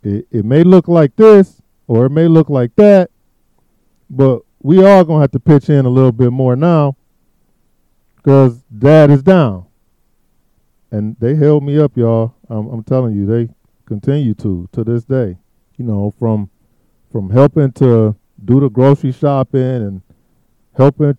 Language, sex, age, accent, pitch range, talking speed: English, male, 50-69, American, 120-155 Hz, 160 wpm